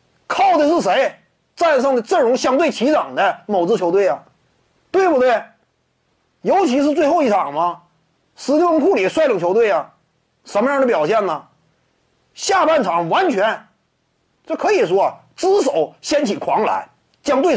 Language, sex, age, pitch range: Chinese, male, 30-49, 200-340 Hz